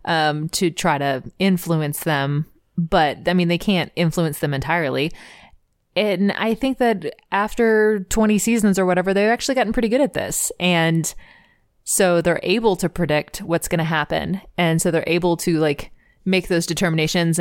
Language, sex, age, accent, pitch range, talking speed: English, female, 20-39, American, 155-185 Hz, 170 wpm